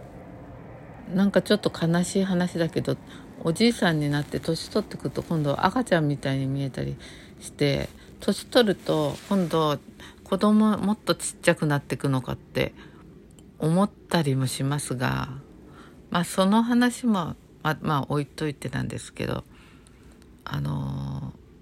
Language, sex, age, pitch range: Japanese, female, 50-69, 135-195 Hz